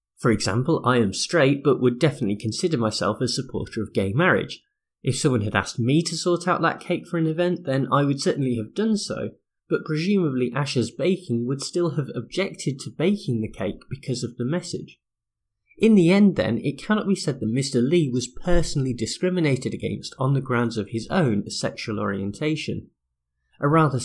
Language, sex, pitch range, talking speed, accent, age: English, male, 110-160 Hz, 190 wpm, British, 20-39